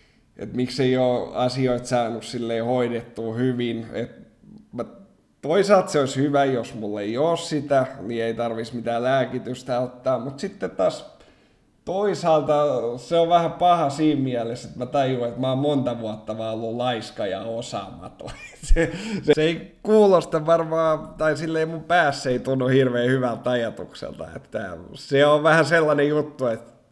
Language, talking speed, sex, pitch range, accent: Finnish, 150 wpm, male, 120-150 Hz, native